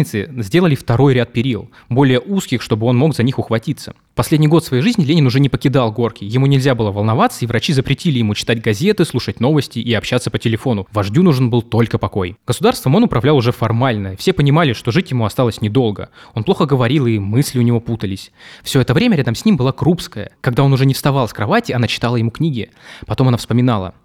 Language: Russian